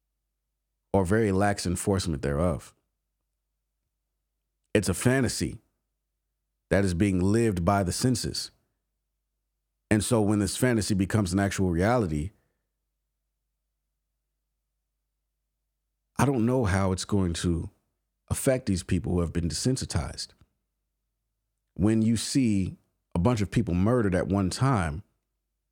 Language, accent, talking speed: English, American, 115 wpm